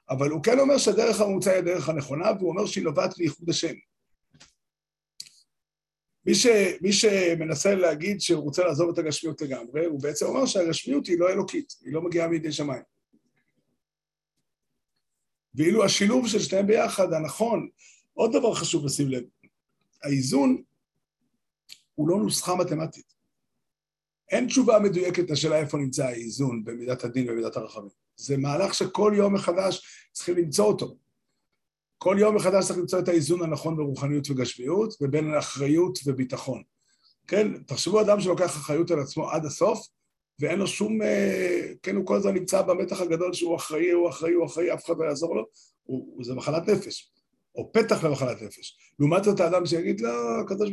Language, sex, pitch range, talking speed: Hebrew, male, 150-195 Hz, 155 wpm